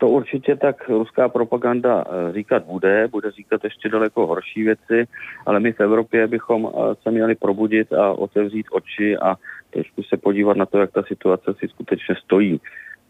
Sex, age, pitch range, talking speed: male, 40-59, 90-110 Hz, 165 wpm